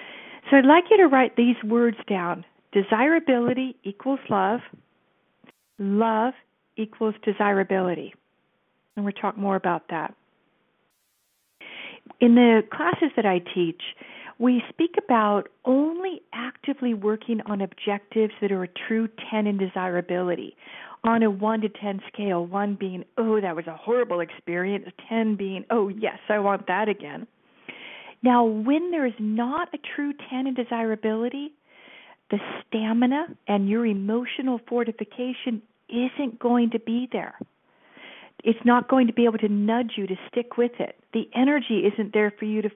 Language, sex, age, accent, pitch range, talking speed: English, female, 40-59, American, 200-250 Hz, 145 wpm